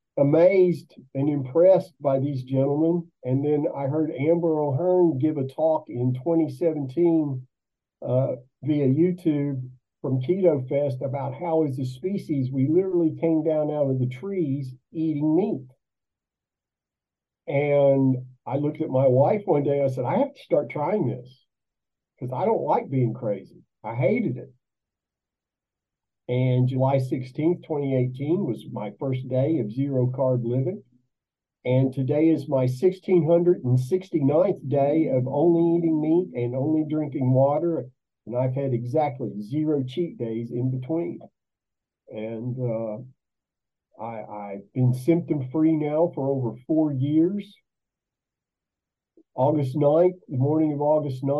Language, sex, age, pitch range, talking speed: Persian, male, 50-69, 125-160 Hz, 130 wpm